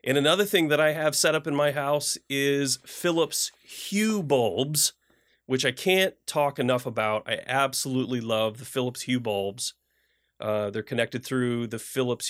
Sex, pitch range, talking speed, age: male, 125-165 Hz, 165 wpm, 30-49